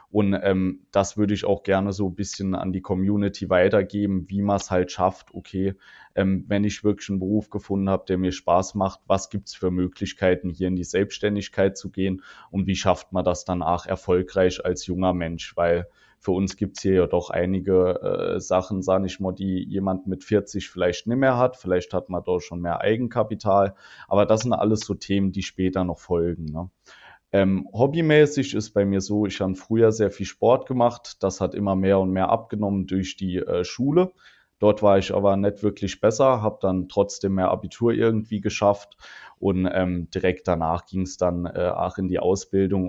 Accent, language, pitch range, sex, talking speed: German, German, 90-100 Hz, male, 200 wpm